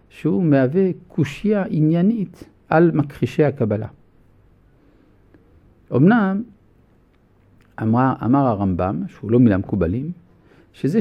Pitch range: 105-160 Hz